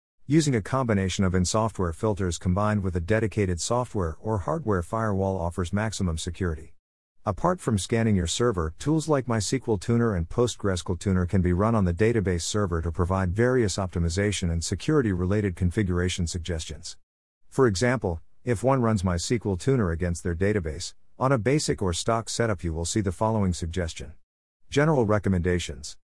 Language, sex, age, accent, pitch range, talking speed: English, male, 50-69, American, 85-115 Hz, 155 wpm